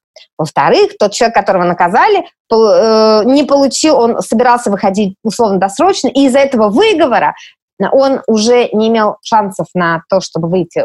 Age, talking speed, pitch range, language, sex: 20-39, 135 wpm, 185-255 Hz, Russian, female